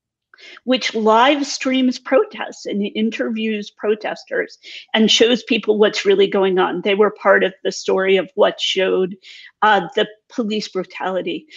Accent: American